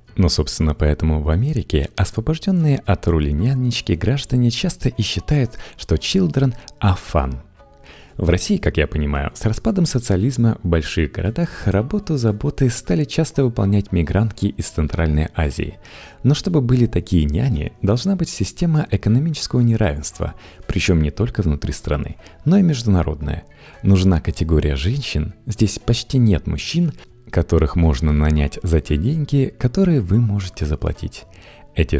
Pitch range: 80-125 Hz